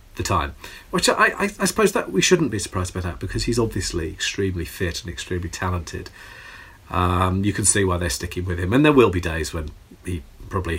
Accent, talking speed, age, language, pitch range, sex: British, 210 wpm, 40-59, English, 90-115 Hz, male